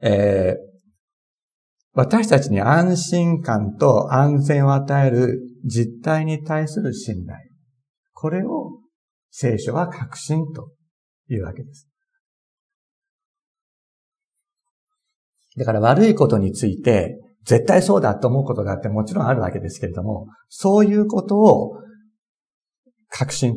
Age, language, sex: 50-69, Japanese, male